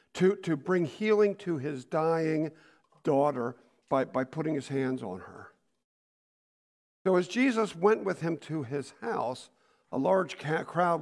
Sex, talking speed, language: male, 150 wpm, English